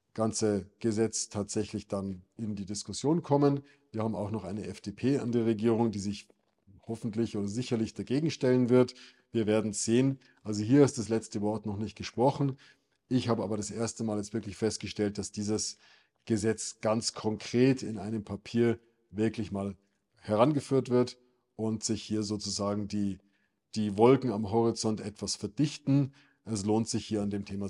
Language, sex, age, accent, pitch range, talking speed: German, male, 50-69, German, 110-130 Hz, 165 wpm